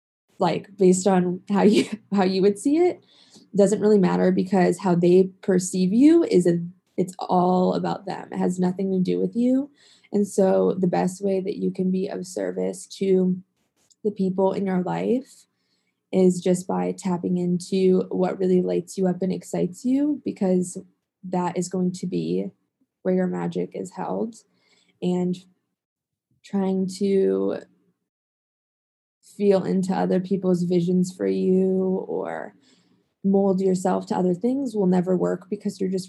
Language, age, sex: English, 20-39, female